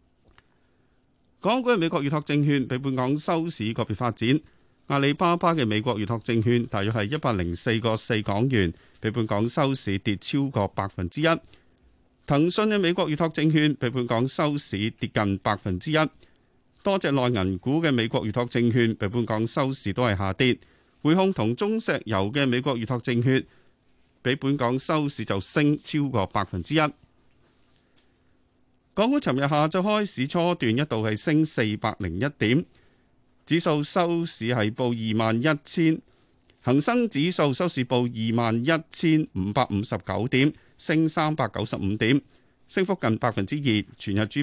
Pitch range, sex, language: 110-155 Hz, male, Chinese